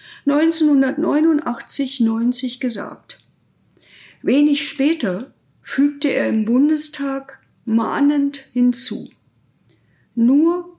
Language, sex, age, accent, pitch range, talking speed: German, female, 50-69, German, 245-290 Hz, 65 wpm